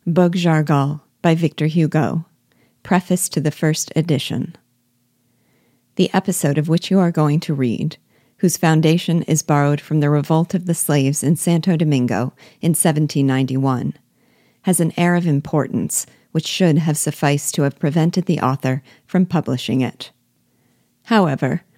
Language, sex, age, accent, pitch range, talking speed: English, female, 50-69, American, 140-170 Hz, 145 wpm